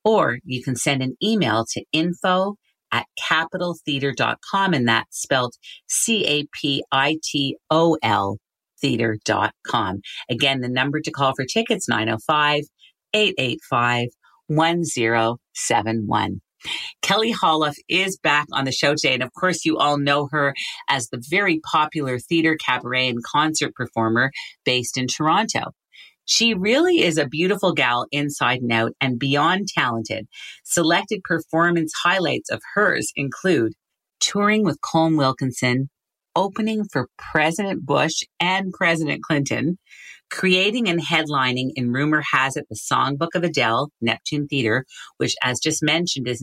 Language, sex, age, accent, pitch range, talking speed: English, female, 40-59, American, 125-170 Hz, 125 wpm